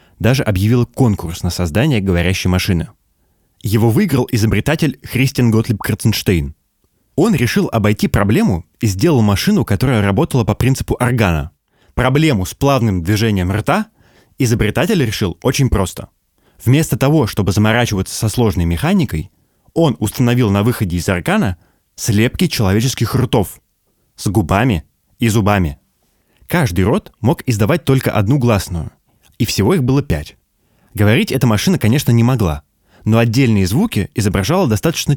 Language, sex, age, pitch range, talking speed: Russian, male, 20-39, 95-130 Hz, 130 wpm